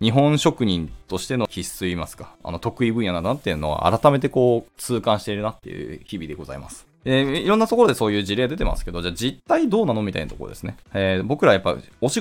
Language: Japanese